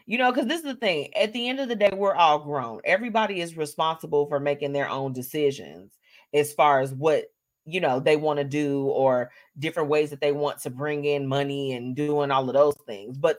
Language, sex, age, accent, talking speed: English, female, 30-49, American, 230 wpm